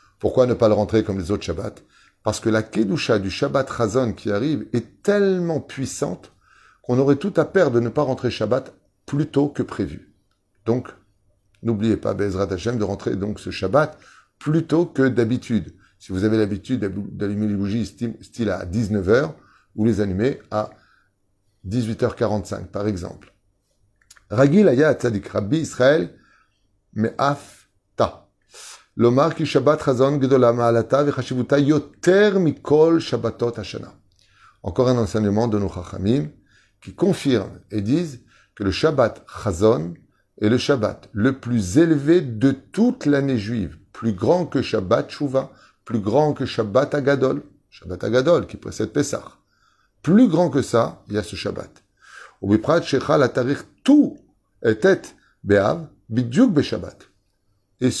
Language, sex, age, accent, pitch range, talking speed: French, male, 30-49, French, 100-140 Hz, 125 wpm